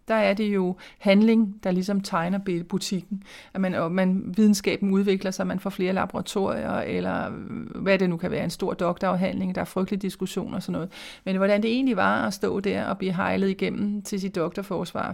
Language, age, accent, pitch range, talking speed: Danish, 30-49, native, 185-210 Hz, 205 wpm